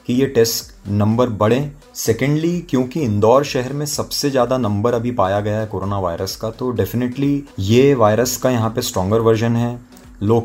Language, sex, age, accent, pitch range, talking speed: Hindi, male, 30-49, native, 110-145 Hz, 180 wpm